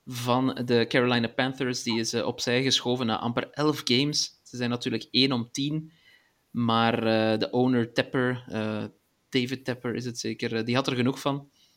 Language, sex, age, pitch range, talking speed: Dutch, male, 30-49, 120-140 Hz, 185 wpm